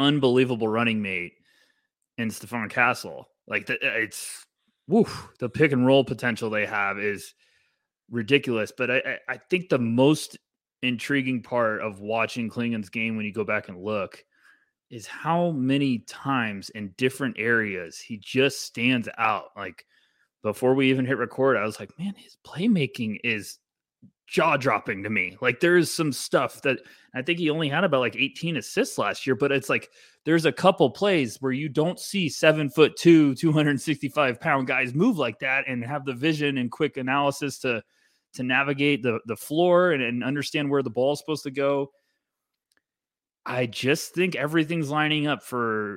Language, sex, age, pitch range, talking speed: English, male, 20-39, 115-150 Hz, 170 wpm